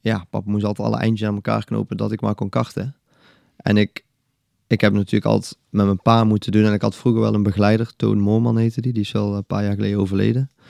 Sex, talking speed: male, 245 wpm